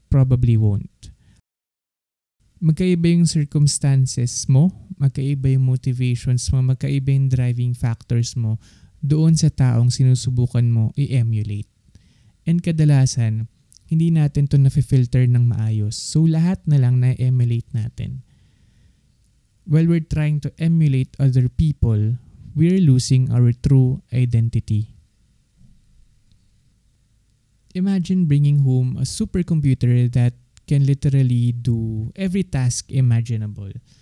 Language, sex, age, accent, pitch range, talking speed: English, male, 20-39, Filipino, 115-145 Hz, 100 wpm